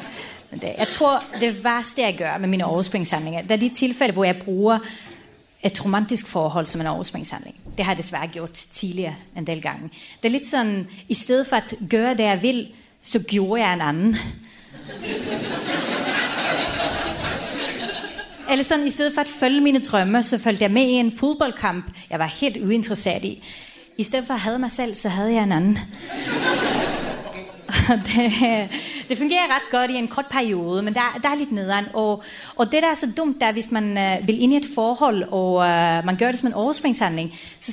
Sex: female